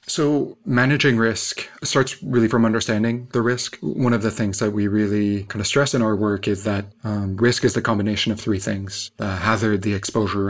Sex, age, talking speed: male, 30-49, 205 wpm